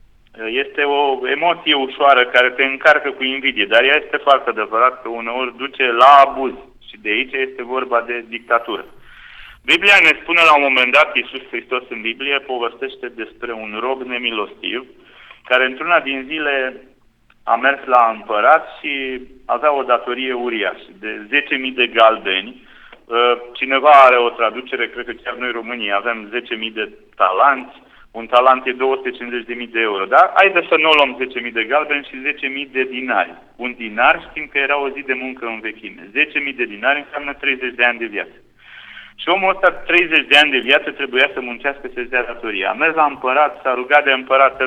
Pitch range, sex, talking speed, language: 120-145 Hz, male, 180 wpm, Romanian